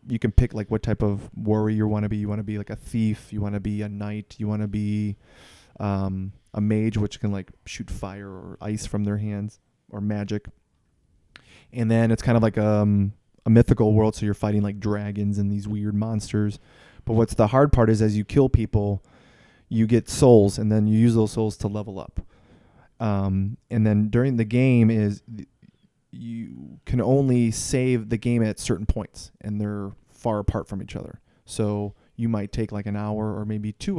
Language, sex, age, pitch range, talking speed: English, male, 20-39, 105-115 Hz, 210 wpm